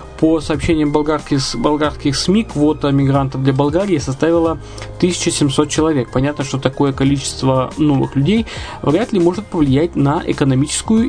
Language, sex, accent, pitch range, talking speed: Russian, male, native, 140-165 Hz, 125 wpm